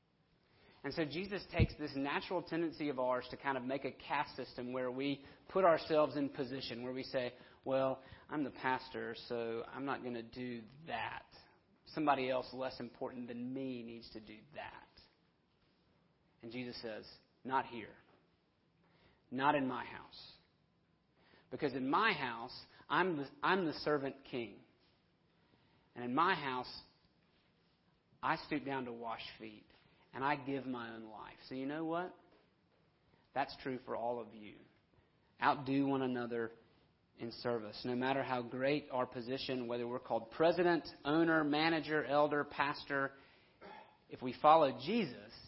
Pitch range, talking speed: 125-150 Hz, 150 wpm